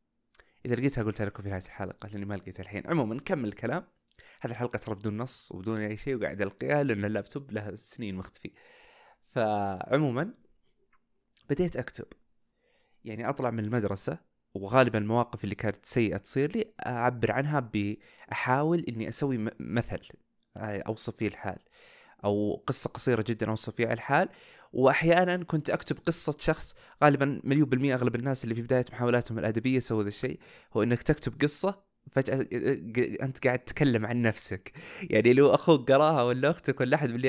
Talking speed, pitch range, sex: 155 wpm, 105-135 Hz, male